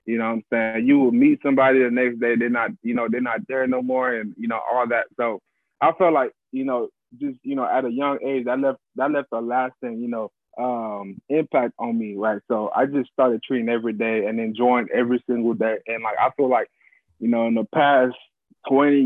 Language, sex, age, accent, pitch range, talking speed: English, male, 20-39, American, 110-130 Hz, 235 wpm